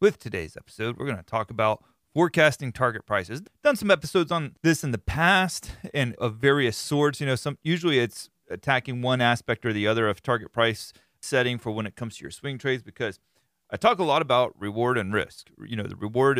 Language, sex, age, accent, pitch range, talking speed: English, male, 30-49, American, 105-130 Hz, 210 wpm